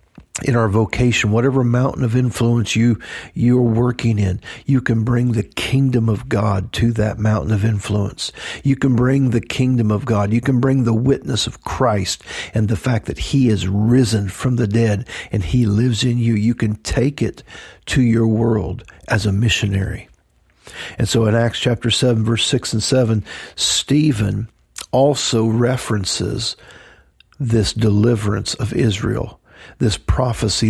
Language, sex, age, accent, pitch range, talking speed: English, male, 50-69, American, 105-125 Hz, 160 wpm